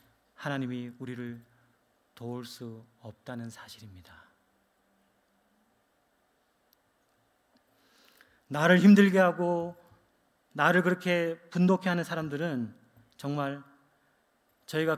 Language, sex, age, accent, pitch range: Korean, male, 30-49, native, 120-165 Hz